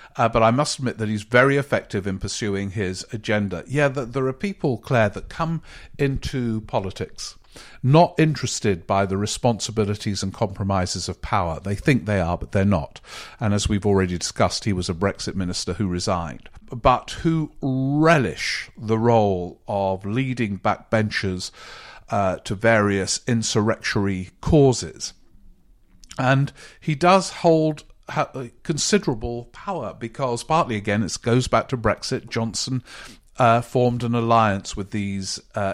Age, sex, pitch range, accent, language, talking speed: 50-69, male, 100-130 Hz, British, English, 145 wpm